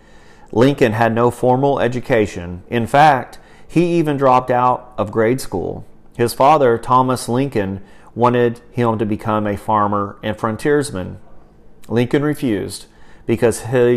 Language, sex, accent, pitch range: English, male, American, 105-125 Hz